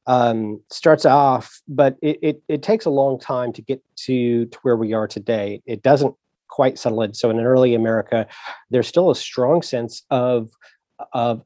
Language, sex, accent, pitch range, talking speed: English, male, American, 115-140 Hz, 190 wpm